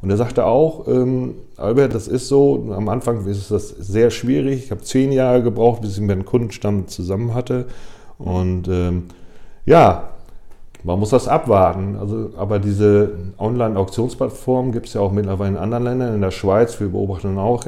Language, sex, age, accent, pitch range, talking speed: German, male, 40-59, German, 100-125 Hz, 180 wpm